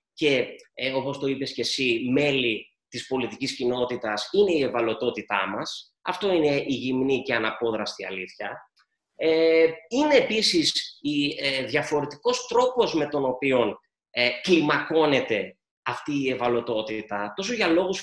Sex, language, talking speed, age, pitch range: male, Greek, 135 wpm, 20-39, 120-180 Hz